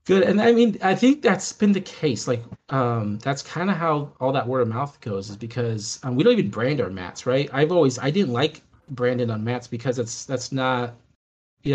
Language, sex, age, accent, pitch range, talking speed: English, male, 30-49, American, 110-135 Hz, 225 wpm